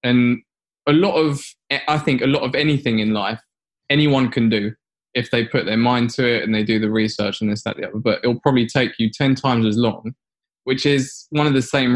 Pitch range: 115-135 Hz